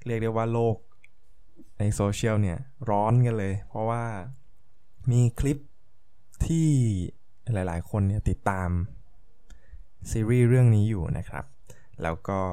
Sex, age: male, 20-39